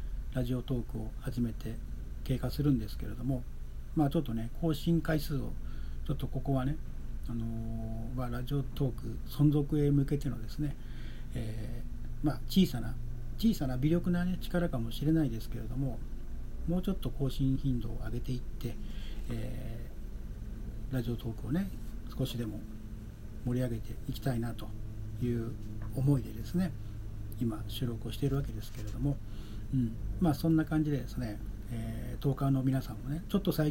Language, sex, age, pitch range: Japanese, male, 40-59, 115-140 Hz